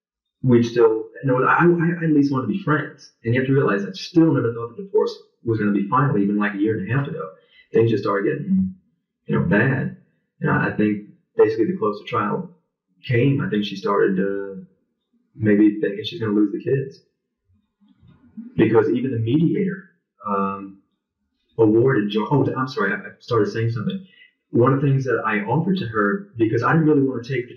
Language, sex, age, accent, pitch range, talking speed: English, male, 30-49, American, 110-160 Hz, 210 wpm